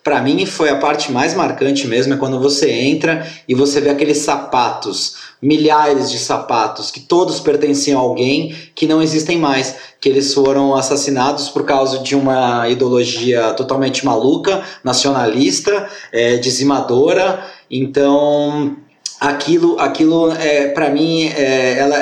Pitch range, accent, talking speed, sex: 135-165 Hz, Brazilian, 130 wpm, male